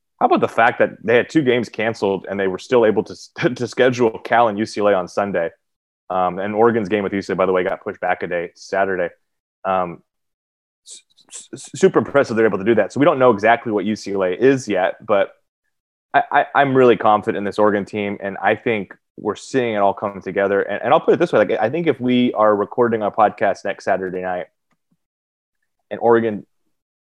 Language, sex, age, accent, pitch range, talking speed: English, male, 20-39, American, 95-115 Hz, 220 wpm